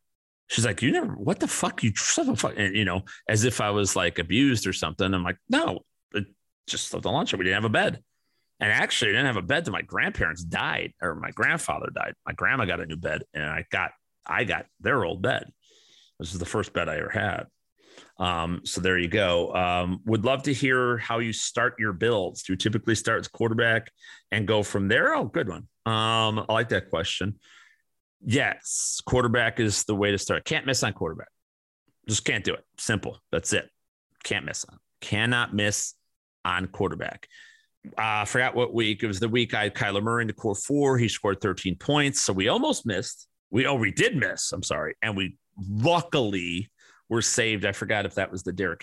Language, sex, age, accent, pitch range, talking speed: English, male, 40-59, American, 95-115 Hz, 210 wpm